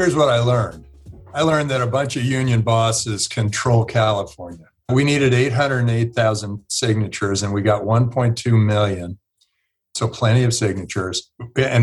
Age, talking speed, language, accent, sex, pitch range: 50-69, 140 wpm, English, American, male, 105-125 Hz